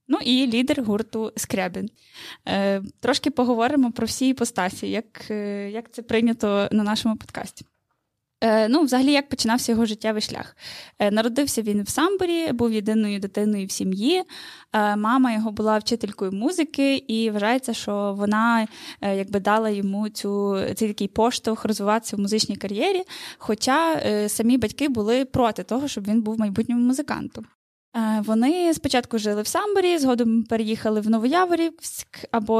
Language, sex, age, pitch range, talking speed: Ukrainian, female, 10-29, 215-290 Hz, 145 wpm